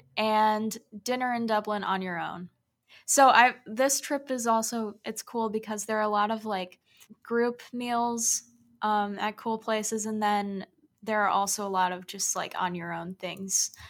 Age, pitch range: 10-29, 200-235 Hz